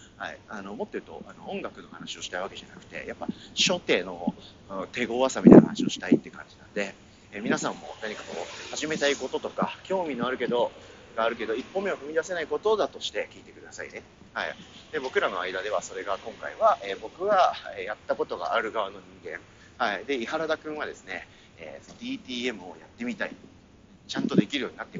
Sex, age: male, 40-59